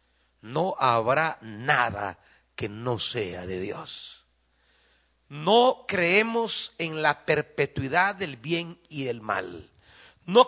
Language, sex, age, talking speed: Spanish, male, 40-59, 110 wpm